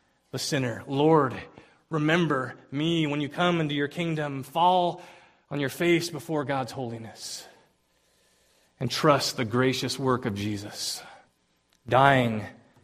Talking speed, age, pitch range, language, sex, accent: 120 wpm, 30-49, 120-150 Hz, English, male, American